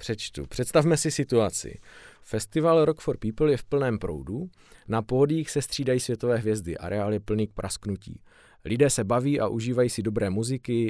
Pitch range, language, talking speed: 105-130 Hz, Czech, 170 wpm